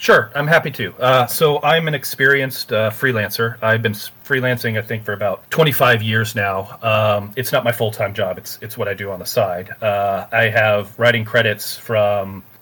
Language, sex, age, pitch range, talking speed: English, male, 30-49, 105-120 Hz, 200 wpm